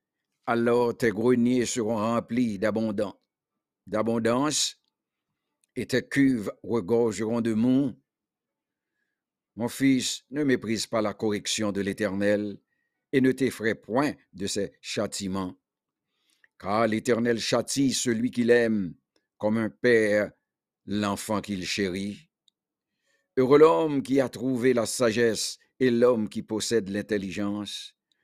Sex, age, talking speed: male, 50-69, 110 wpm